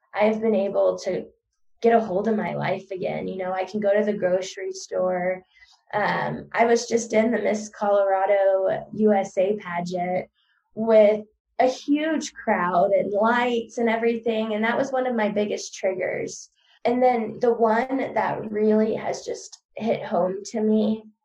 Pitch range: 190-220 Hz